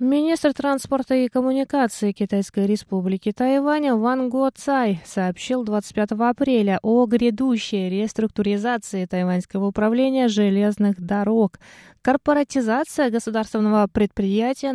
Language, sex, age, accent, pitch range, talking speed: Russian, female, 20-39, native, 190-240 Hz, 95 wpm